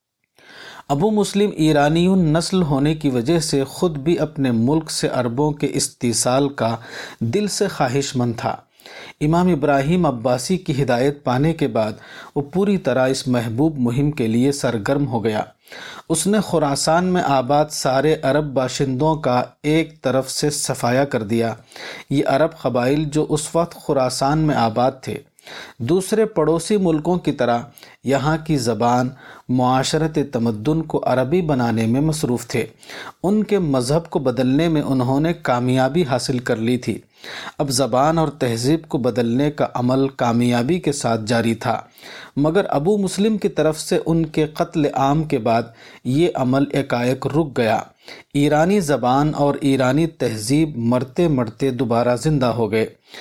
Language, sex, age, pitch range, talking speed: Urdu, male, 50-69, 125-160 Hz, 155 wpm